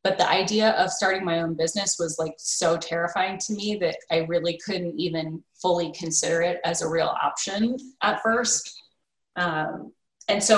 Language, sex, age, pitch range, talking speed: English, female, 20-39, 165-190 Hz, 175 wpm